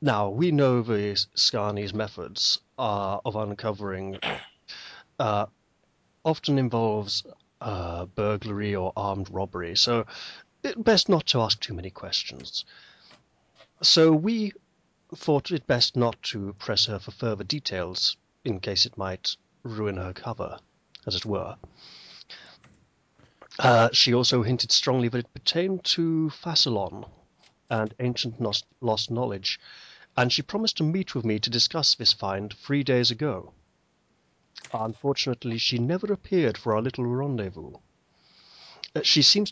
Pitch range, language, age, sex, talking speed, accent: 105-145 Hz, English, 30-49, male, 130 wpm, British